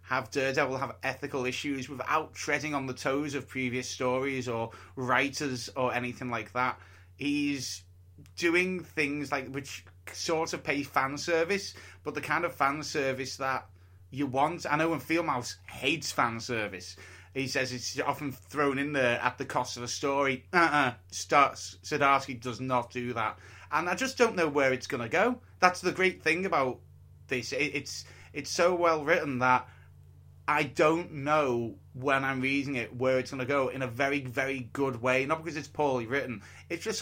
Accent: British